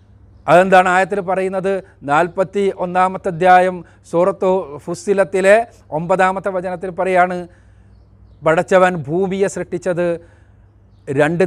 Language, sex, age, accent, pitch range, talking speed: Malayalam, male, 40-59, native, 155-195 Hz, 80 wpm